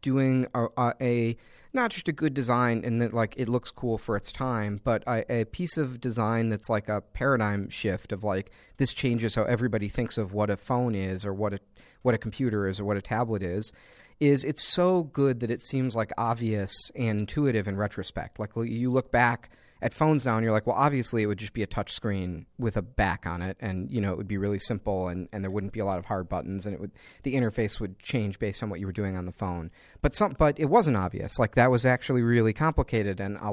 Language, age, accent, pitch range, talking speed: English, 40-59, American, 105-125 Hz, 245 wpm